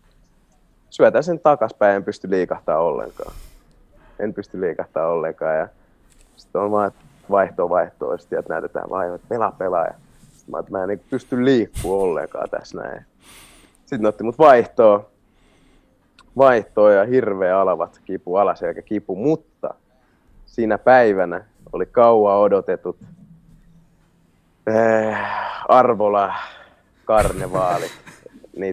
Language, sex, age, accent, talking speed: Finnish, male, 30-49, native, 110 wpm